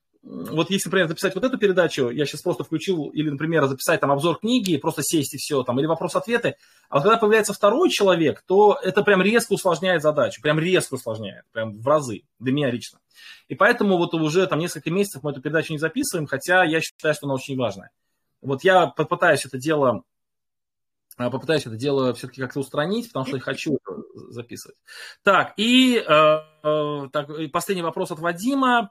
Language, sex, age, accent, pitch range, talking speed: Russian, male, 20-39, native, 150-200 Hz, 180 wpm